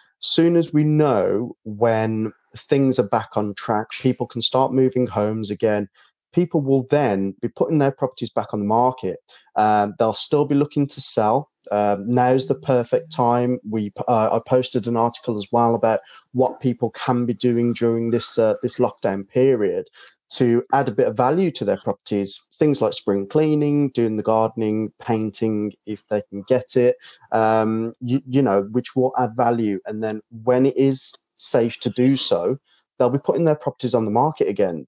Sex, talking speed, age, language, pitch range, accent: male, 185 wpm, 20-39, English, 110-130 Hz, British